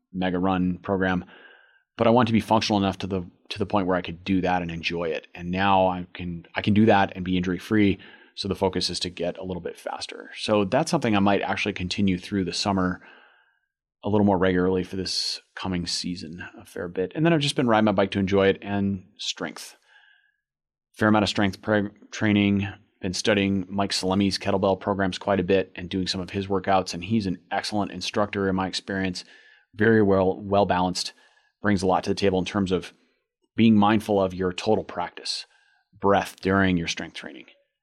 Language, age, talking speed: English, 30-49, 210 wpm